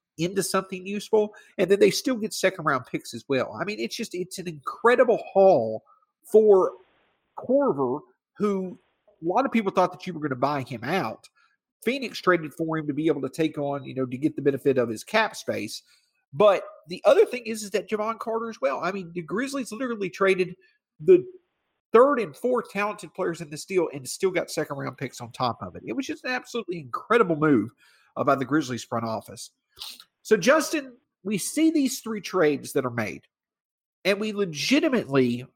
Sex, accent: male, American